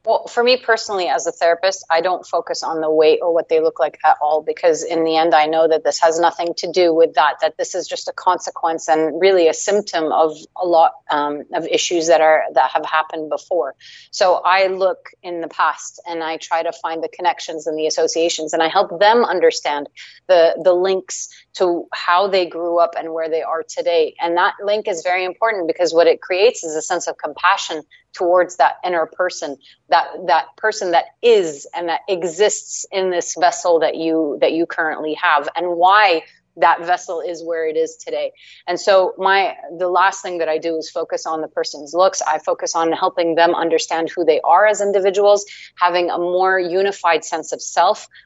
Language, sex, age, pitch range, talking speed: English, female, 30-49, 165-205 Hz, 210 wpm